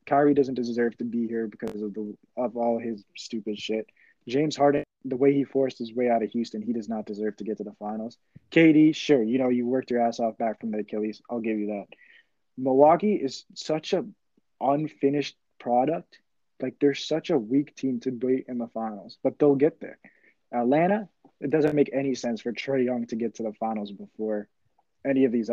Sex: male